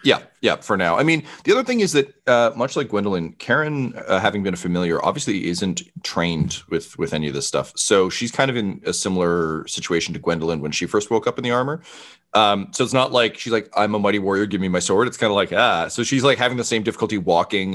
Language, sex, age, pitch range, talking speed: English, male, 30-49, 85-120 Hz, 255 wpm